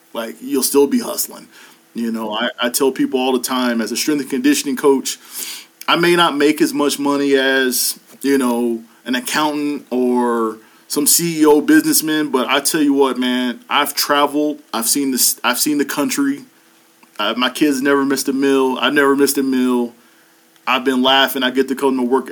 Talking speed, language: 195 wpm, English